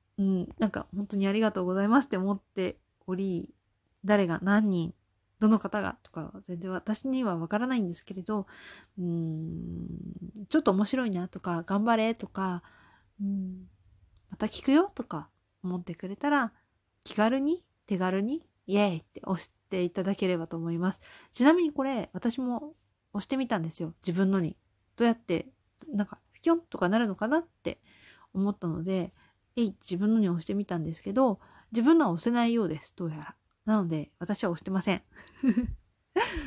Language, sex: Japanese, female